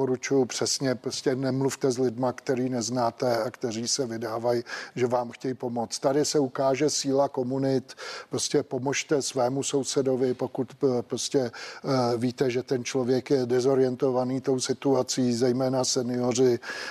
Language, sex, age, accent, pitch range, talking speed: Czech, male, 50-69, native, 130-140 Hz, 130 wpm